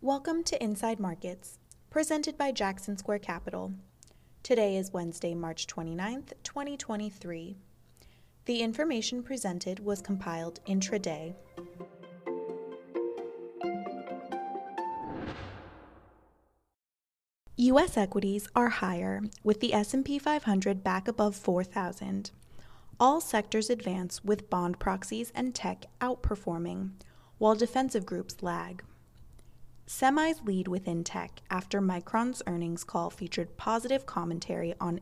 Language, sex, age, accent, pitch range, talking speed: English, female, 20-39, American, 175-235 Hz, 100 wpm